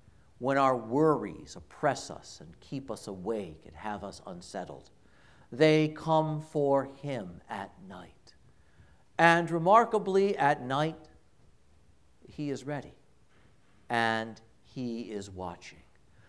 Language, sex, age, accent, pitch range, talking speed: English, male, 60-79, American, 135-195 Hz, 110 wpm